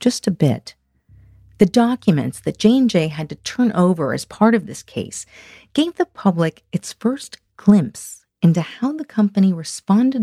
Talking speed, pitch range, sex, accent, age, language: 160 wpm, 140-210 Hz, female, American, 40-59, English